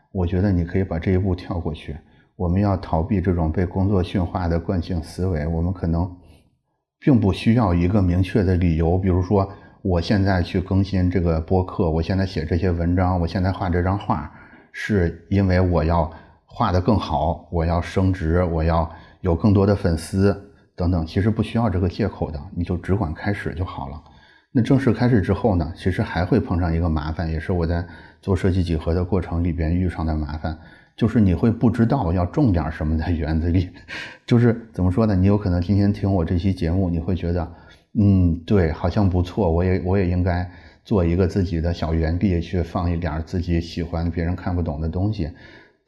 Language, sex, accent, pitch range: Chinese, male, native, 85-100 Hz